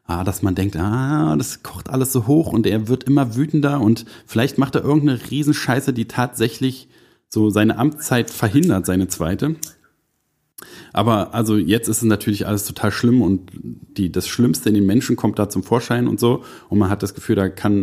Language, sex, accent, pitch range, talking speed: German, male, German, 105-130 Hz, 195 wpm